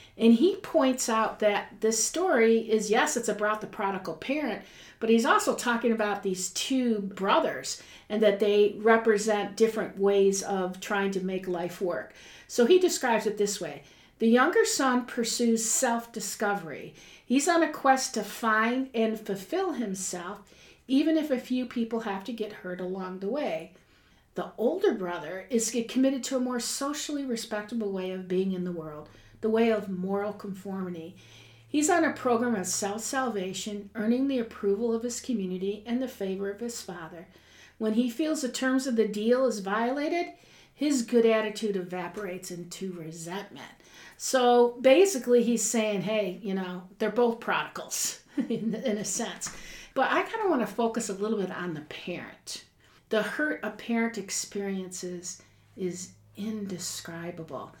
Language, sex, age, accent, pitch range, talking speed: English, female, 50-69, American, 190-245 Hz, 160 wpm